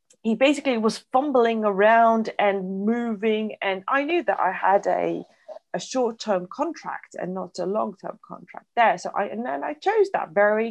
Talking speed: 175 wpm